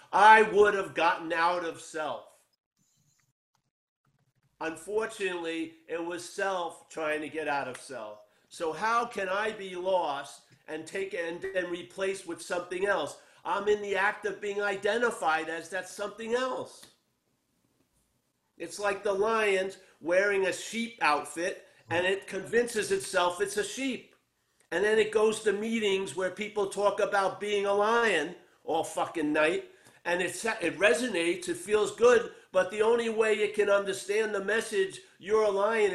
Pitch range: 170-220 Hz